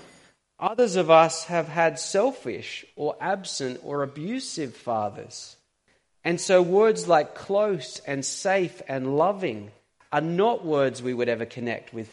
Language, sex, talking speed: English, male, 140 wpm